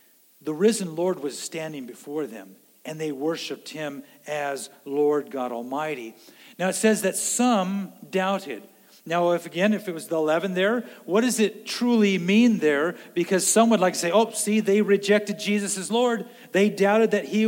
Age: 50-69